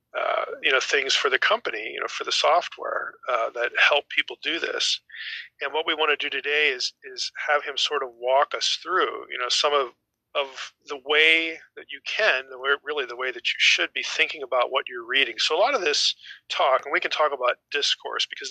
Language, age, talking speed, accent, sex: English, 40-59, 235 wpm, American, male